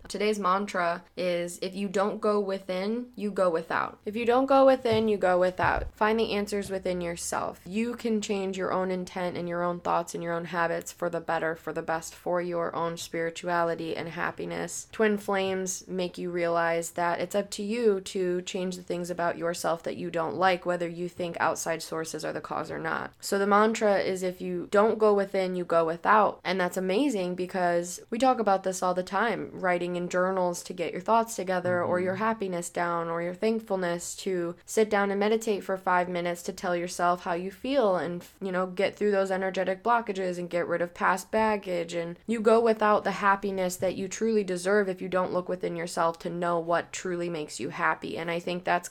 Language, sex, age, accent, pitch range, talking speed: English, female, 20-39, American, 175-200 Hz, 210 wpm